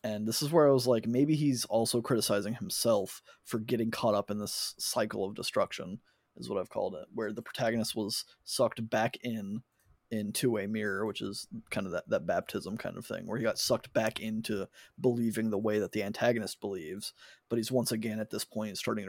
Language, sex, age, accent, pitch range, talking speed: English, male, 20-39, American, 110-125 Hz, 210 wpm